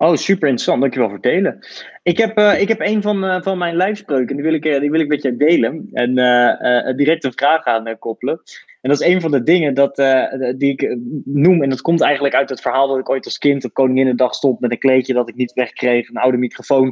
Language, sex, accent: Dutch, male, Dutch